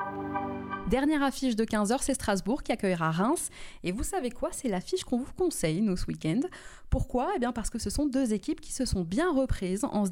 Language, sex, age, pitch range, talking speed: French, female, 20-39, 185-250 Hz, 220 wpm